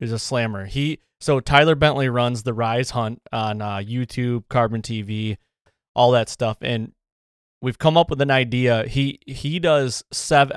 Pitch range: 120-135 Hz